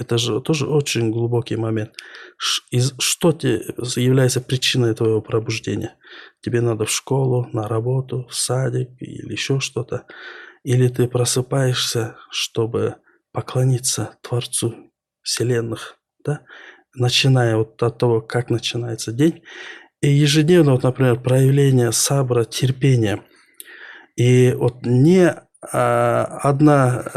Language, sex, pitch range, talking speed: Russian, male, 120-145 Hz, 105 wpm